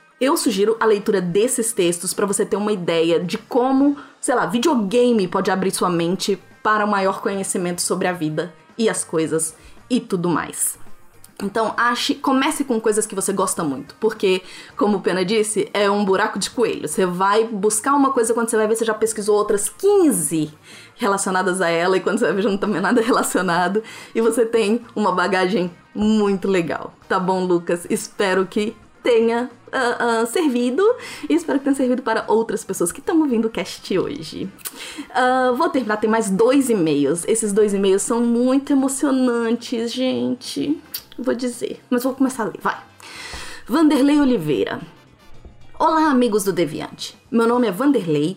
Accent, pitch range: Brazilian, 185-245 Hz